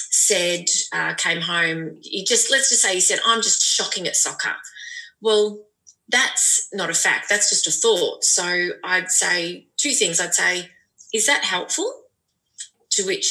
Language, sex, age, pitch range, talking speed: English, female, 30-49, 180-270 Hz, 165 wpm